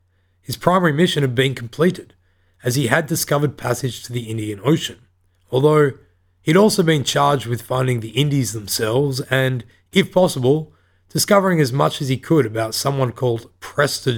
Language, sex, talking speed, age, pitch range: English, male, 160 wpm, 30-49, 100-145 Hz